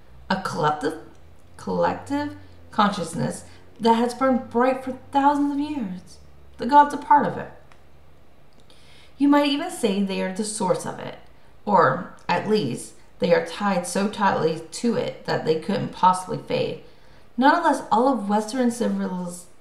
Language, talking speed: English, 150 wpm